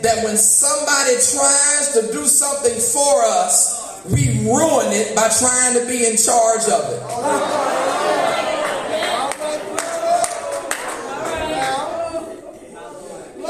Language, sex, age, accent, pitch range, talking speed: English, male, 40-59, American, 260-325 Hz, 90 wpm